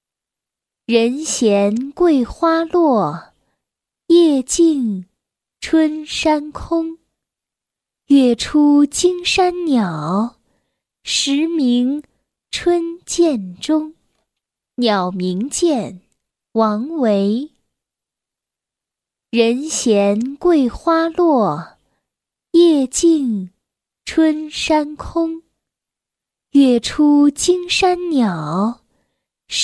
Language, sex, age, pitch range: Chinese, female, 10-29, 230-325 Hz